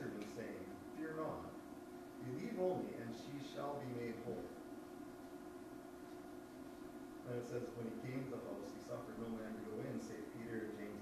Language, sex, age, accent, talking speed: English, male, 40-59, American, 170 wpm